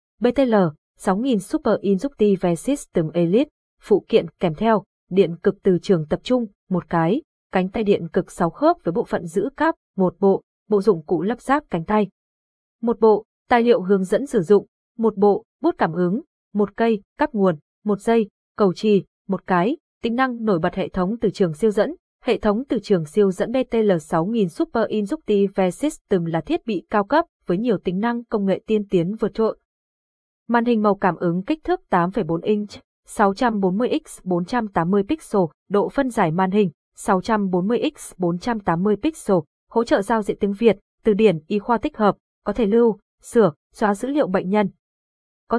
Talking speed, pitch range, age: 185 wpm, 185-235 Hz, 20-39